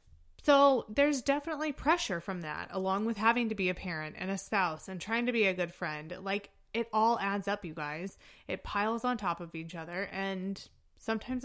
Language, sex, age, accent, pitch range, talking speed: English, female, 20-39, American, 175-240 Hz, 205 wpm